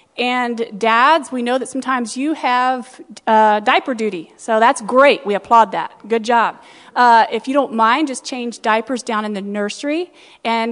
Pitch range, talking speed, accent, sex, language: 210-270 Hz, 180 wpm, American, female, English